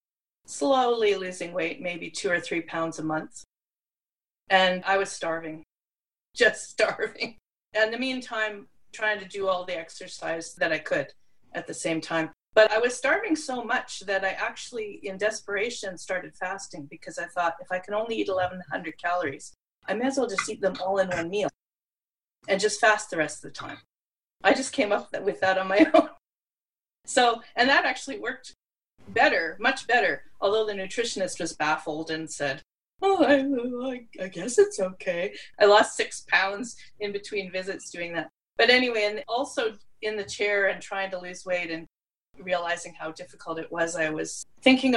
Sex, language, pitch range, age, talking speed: female, English, 170-215 Hz, 30-49, 180 wpm